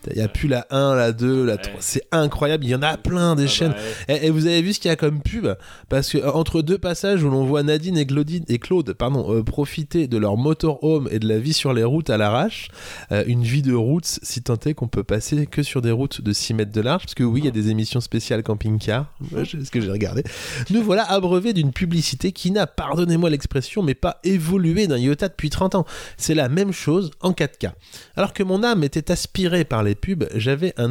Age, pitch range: 20-39, 120-170 Hz